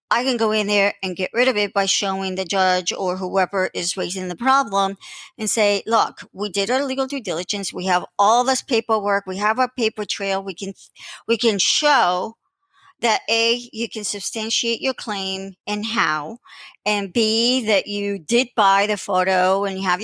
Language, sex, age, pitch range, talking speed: English, male, 50-69, 195-235 Hz, 190 wpm